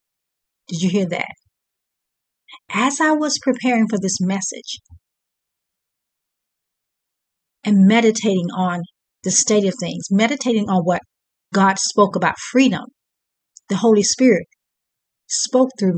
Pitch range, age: 185-240 Hz, 50-69